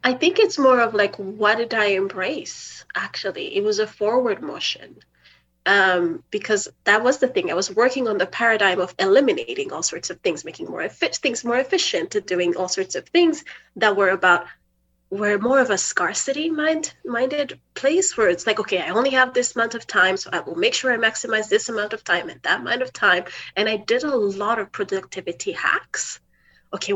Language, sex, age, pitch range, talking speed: English, female, 30-49, 185-280 Hz, 205 wpm